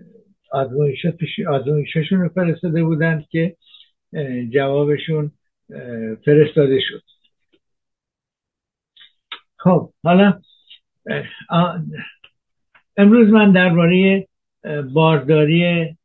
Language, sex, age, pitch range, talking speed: Persian, male, 60-79, 145-175 Hz, 50 wpm